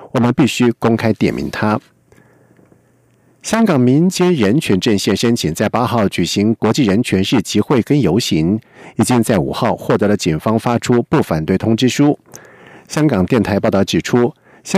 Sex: male